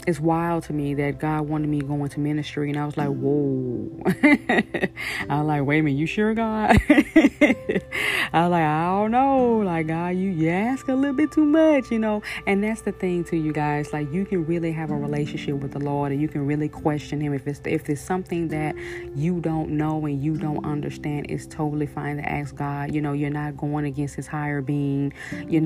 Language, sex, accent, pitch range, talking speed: English, female, American, 145-165 Hz, 225 wpm